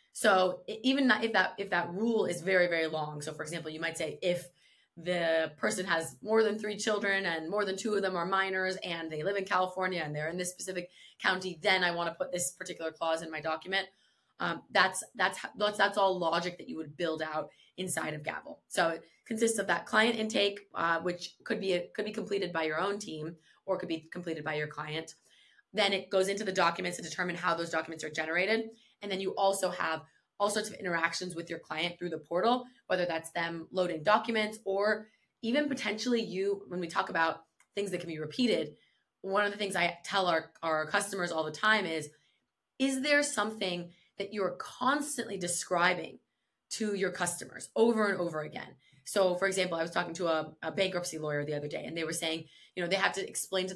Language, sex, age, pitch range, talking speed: English, female, 20-39, 165-200 Hz, 215 wpm